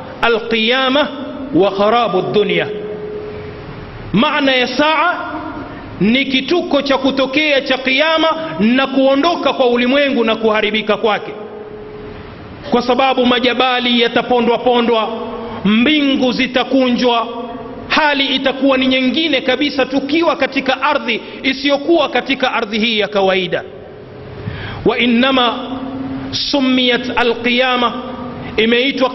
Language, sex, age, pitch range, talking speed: Swahili, male, 40-59, 220-270 Hz, 95 wpm